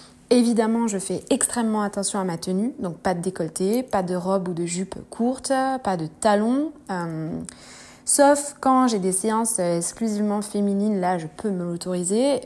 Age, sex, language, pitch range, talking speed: 20-39, female, French, 175-215 Hz, 170 wpm